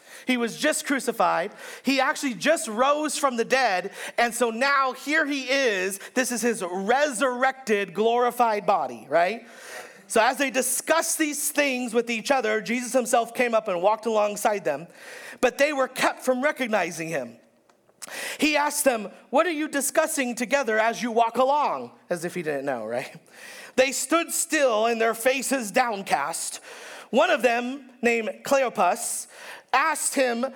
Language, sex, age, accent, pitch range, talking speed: English, male, 40-59, American, 240-290 Hz, 155 wpm